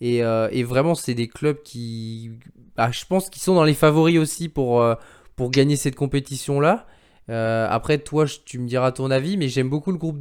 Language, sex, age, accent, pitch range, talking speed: French, male, 20-39, French, 120-150 Hz, 220 wpm